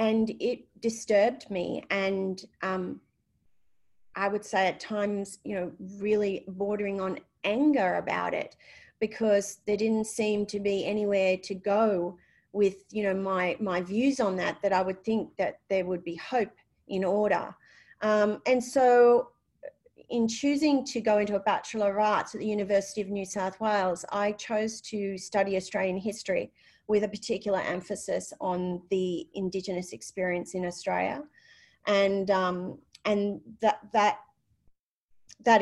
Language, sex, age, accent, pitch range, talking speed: English, female, 40-59, Australian, 190-220 Hz, 150 wpm